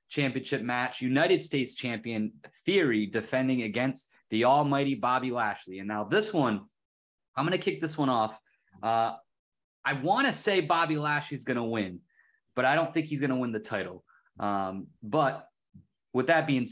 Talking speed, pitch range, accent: 160 wpm, 110-140 Hz, American